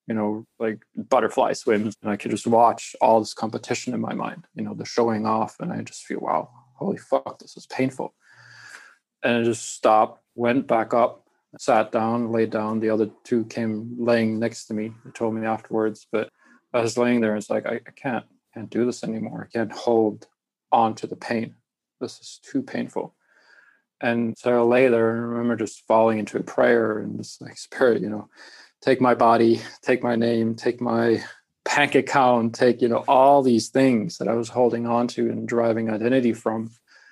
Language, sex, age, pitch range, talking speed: English, male, 20-39, 110-120 Hz, 205 wpm